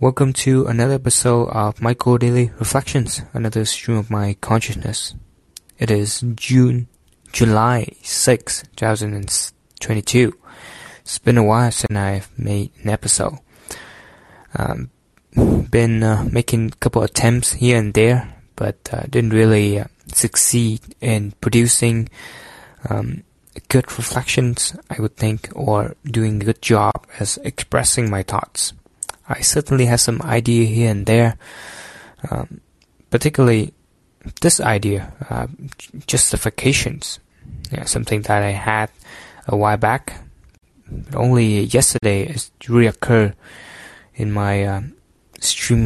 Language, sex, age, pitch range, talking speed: English, male, 20-39, 105-120 Hz, 125 wpm